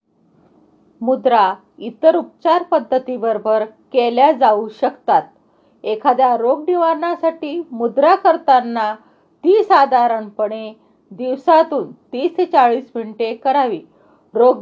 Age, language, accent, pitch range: 40-59, Marathi, native, 230-290 Hz